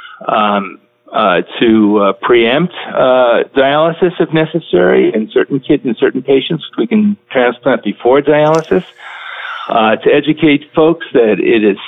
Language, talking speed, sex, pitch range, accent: English, 135 wpm, male, 115-160 Hz, American